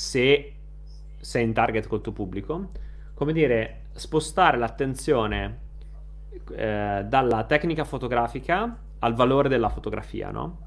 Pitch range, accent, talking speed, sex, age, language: 115-155 Hz, native, 105 wpm, male, 30-49, Italian